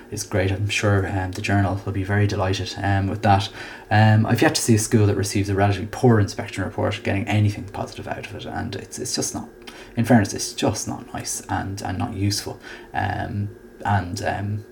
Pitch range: 100-115 Hz